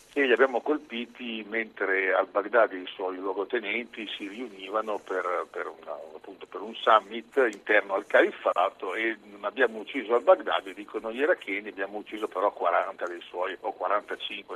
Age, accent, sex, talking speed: 50-69, native, male, 160 wpm